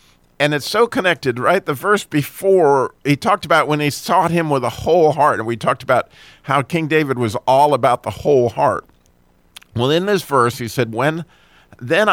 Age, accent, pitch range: 50-69, American, 130-175 Hz